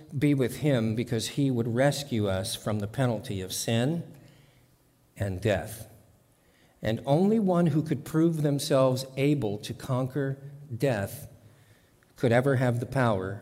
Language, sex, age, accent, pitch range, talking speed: English, male, 50-69, American, 120-150 Hz, 140 wpm